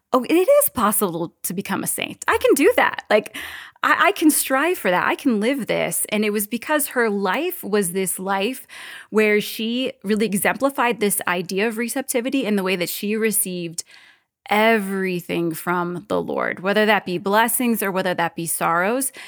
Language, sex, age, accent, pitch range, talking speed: English, female, 20-39, American, 185-230 Hz, 185 wpm